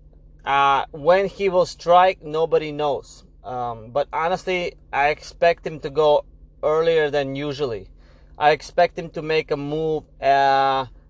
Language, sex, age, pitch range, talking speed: English, male, 20-39, 135-170 Hz, 140 wpm